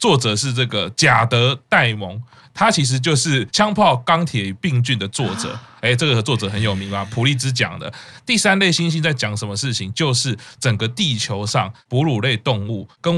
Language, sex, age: Chinese, male, 20-39